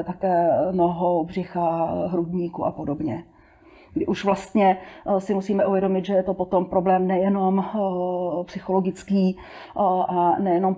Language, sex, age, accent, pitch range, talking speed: Czech, female, 40-59, native, 180-200 Hz, 115 wpm